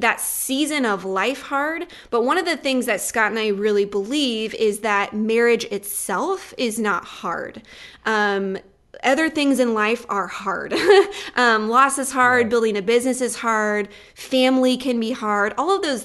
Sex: female